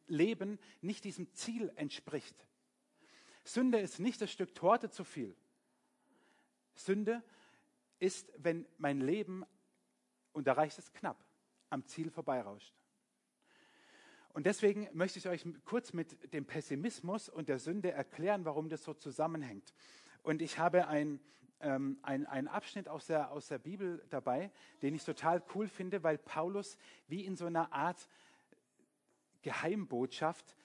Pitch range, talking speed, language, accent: 150-195 Hz, 130 wpm, German, German